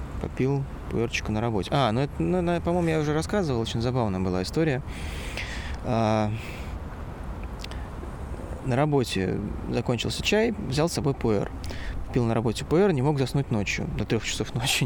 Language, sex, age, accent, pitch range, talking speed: Russian, male, 20-39, native, 90-135 Hz, 140 wpm